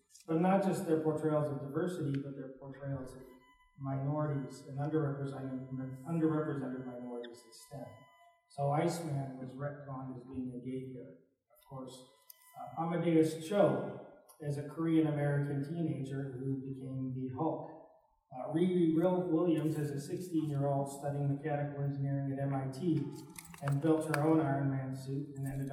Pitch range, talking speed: 130-155 Hz, 140 wpm